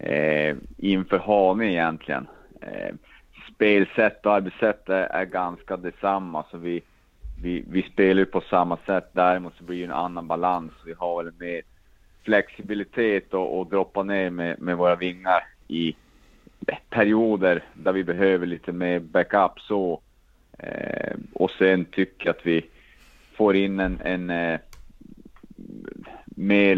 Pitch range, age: 85-95 Hz, 30-49